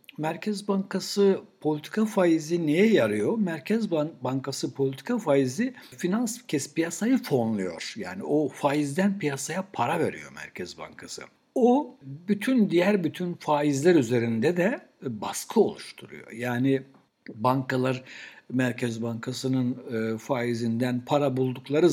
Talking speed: 105 wpm